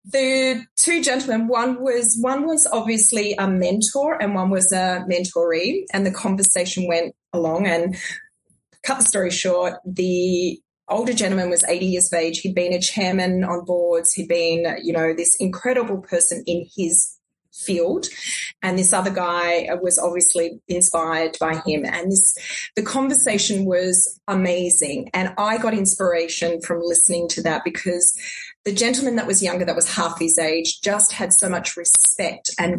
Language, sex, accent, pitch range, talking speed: English, female, Australian, 175-225 Hz, 165 wpm